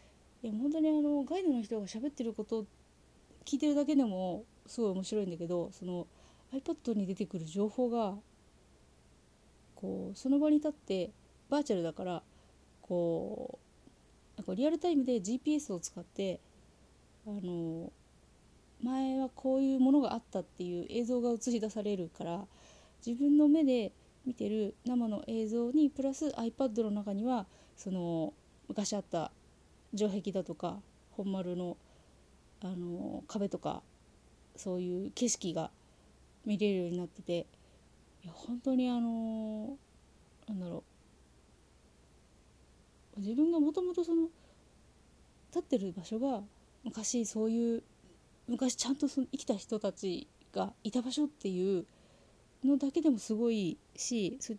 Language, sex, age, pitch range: Japanese, female, 30-49, 175-255 Hz